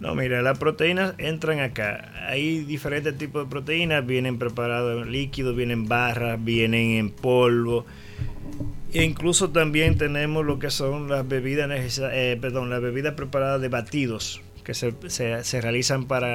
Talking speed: 160 wpm